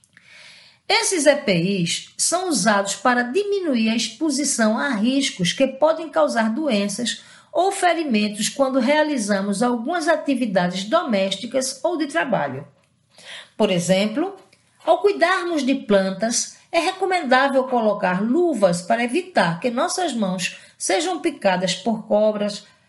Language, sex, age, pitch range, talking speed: Portuguese, female, 50-69, 205-310 Hz, 115 wpm